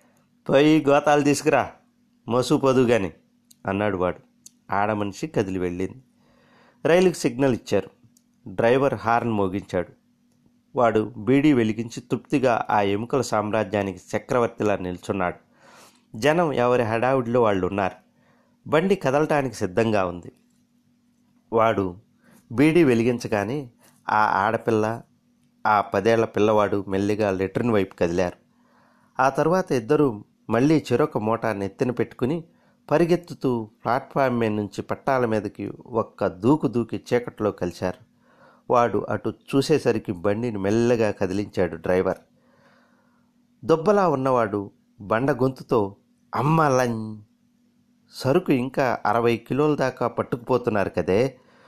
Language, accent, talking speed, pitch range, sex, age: Telugu, native, 95 wpm, 105-150 Hz, male, 30-49